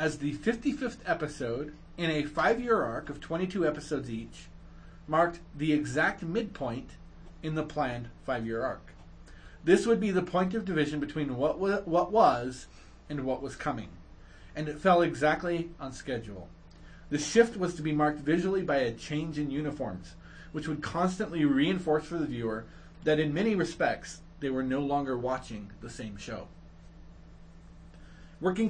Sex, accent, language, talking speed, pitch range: male, American, English, 155 wpm, 115-165 Hz